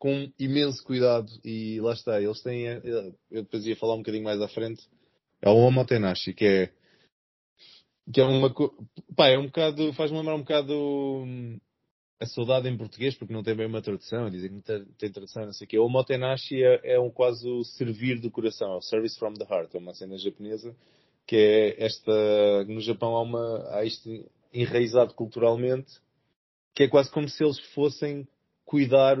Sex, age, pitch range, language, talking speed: male, 20-39, 110-130 Hz, Portuguese, 185 wpm